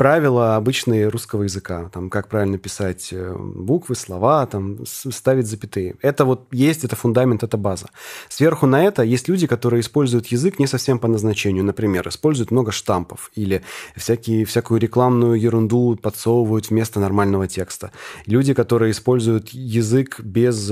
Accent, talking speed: native, 150 wpm